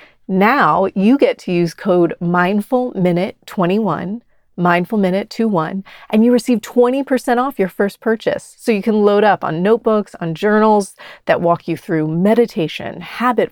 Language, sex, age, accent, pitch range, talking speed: English, female, 30-49, American, 170-215 Hz, 140 wpm